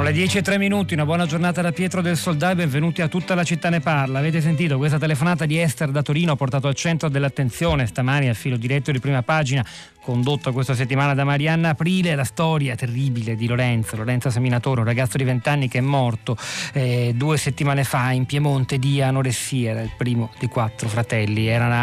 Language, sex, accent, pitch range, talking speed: Italian, male, native, 125-155 Hz, 205 wpm